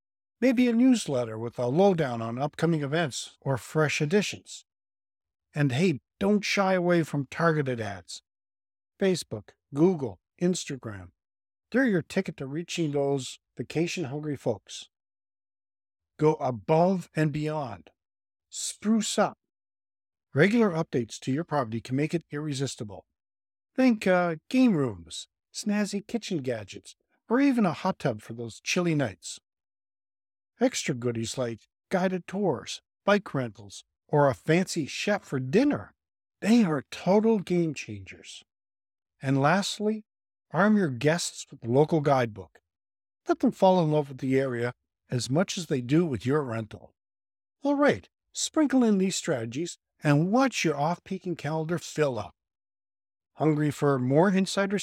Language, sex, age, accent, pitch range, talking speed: English, male, 50-69, American, 115-190 Hz, 135 wpm